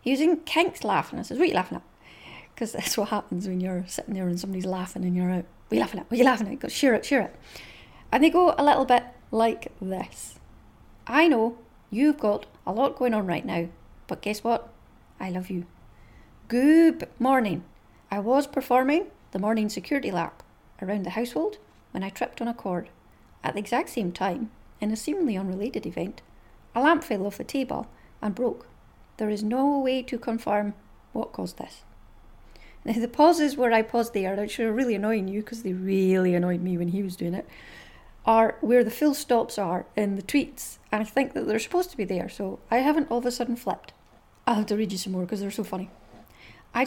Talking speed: 220 wpm